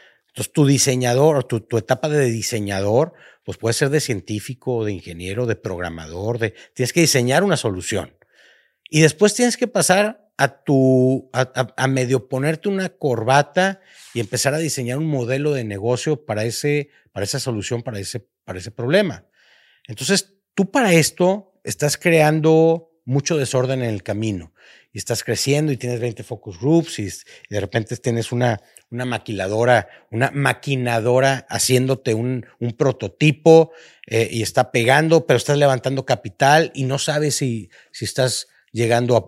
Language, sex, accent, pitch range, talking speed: Spanish, male, Mexican, 115-155 Hz, 155 wpm